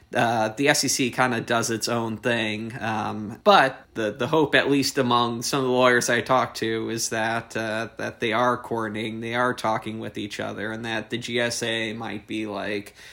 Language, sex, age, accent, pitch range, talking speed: English, male, 20-39, American, 110-125 Hz, 200 wpm